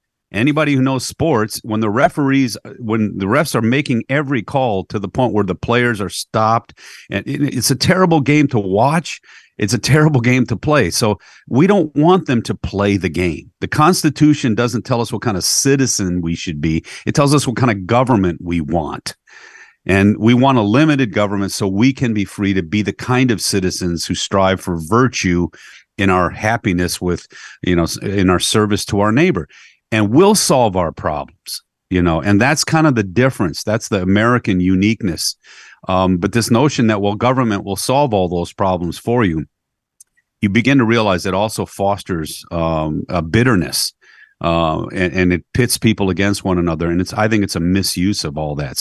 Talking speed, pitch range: 195 wpm, 95-125 Hz